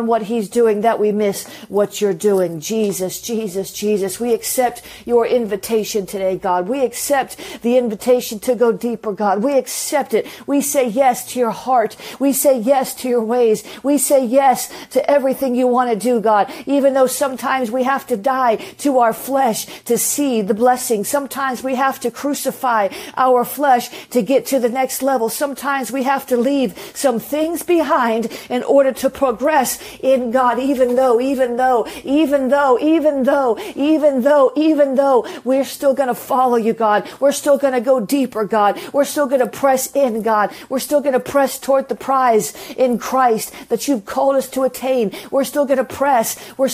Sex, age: female, 50-69